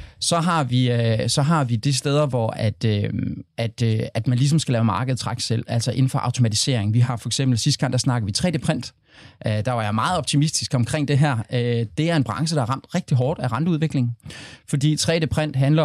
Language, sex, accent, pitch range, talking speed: Danish, male, native, 115-145 Hz, 210 wpm